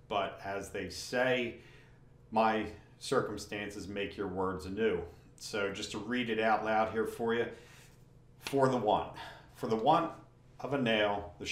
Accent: American